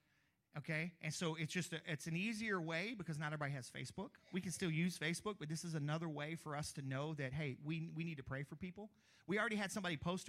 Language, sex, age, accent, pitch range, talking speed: English, male, 40-59, American, 140-175 Hz, 250 wpm